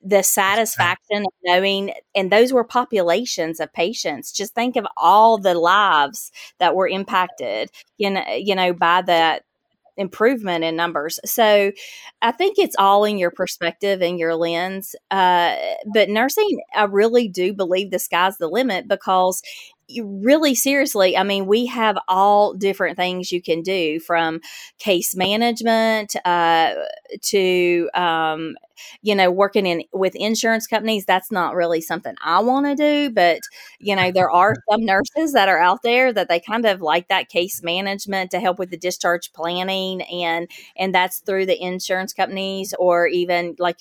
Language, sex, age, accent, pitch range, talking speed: English, female, 30-49, American, 175-215 Hz, 160 wpm